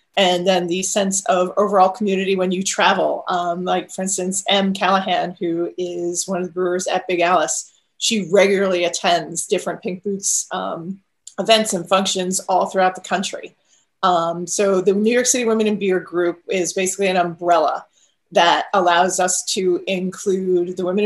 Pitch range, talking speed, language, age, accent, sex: 180-205 Hz, 170 wpm, English, 30-49, American, female